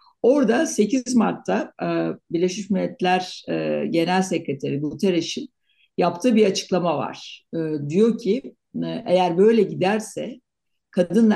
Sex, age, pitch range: female, 60-79, 160-210 Hz